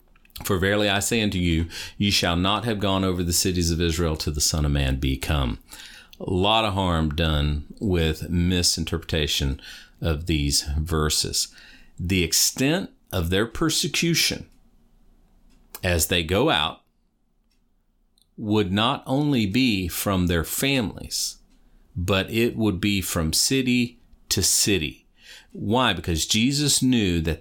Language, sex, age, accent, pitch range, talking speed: English, male, 40-59, American, 80-115 Hz, 135 wpm